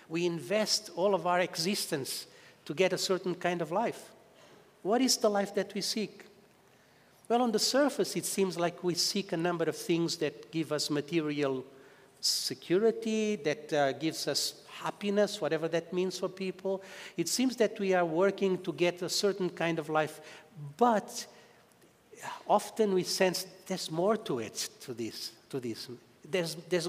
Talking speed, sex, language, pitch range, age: 165 wpm, male, English, 160-205 Hz, 50-69